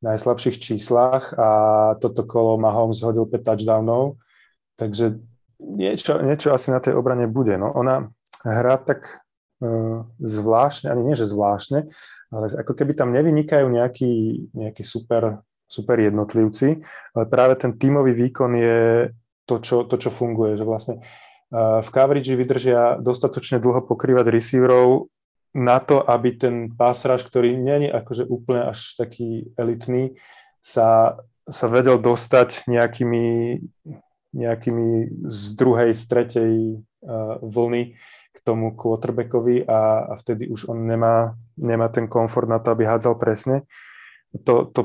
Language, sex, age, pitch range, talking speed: Slovak, male, 20-39, 115-125 Hz, 130 wpm